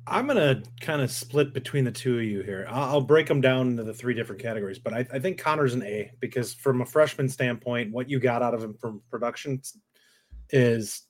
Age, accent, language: 30-49, American, English